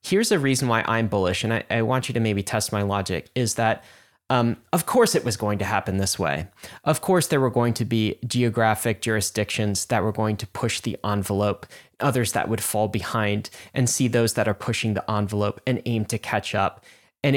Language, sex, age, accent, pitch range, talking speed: English, male, 20-39, American, 110-140 Hz, 220 wpm